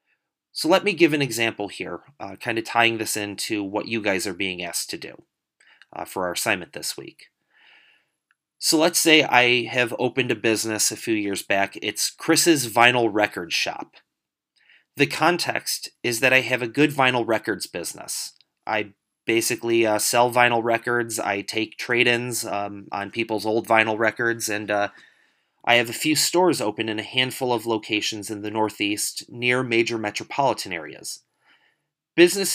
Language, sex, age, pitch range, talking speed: English, male, 30-49, 110-145 Hz, 170 wpm